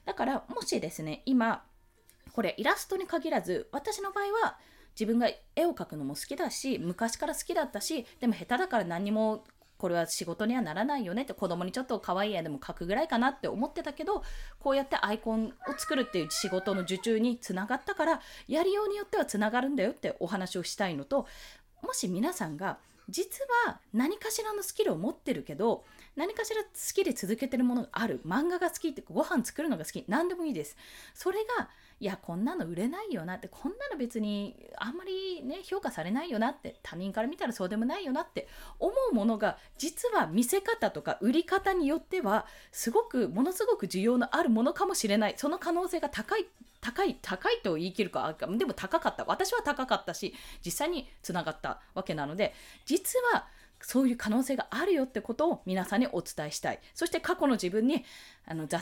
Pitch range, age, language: 200-330 Hz, 20-39, Japanese